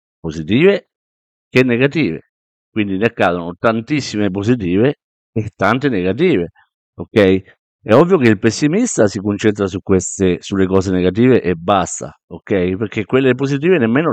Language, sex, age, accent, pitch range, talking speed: Italian, male, 50-69, native, 100-120 Hz, 130 wpm